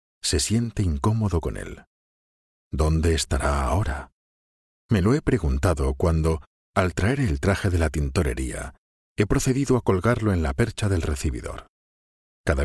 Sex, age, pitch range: male, 50-69, 75-100 Hz